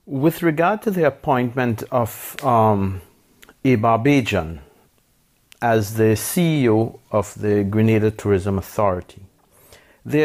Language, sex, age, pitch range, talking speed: English, male, 50-69, 105-140 Hz, 105 wpm